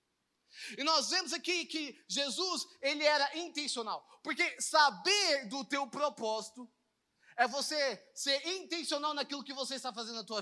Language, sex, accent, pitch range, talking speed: Portuguese, male, Brazilian, 250-320 Hz, 145 wpm